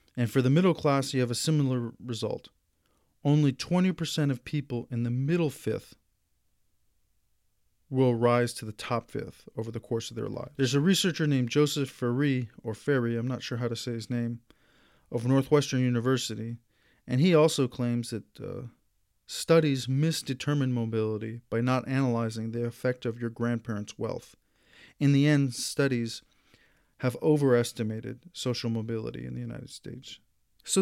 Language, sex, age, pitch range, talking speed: English, male, 40-59, 115-140 Hz, 155 wpm